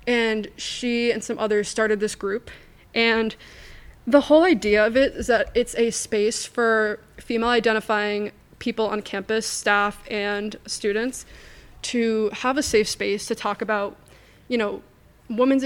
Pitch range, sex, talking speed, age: 210-235 Hz, female, 150 wpm, 20-39